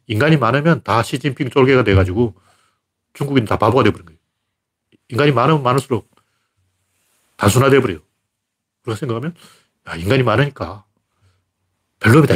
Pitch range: 100-140 Hz